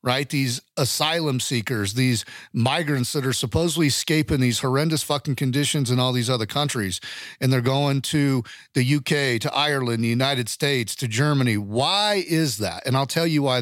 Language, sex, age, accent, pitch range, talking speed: English, male, 40-59, American, 125-150 Hz, 175 wpm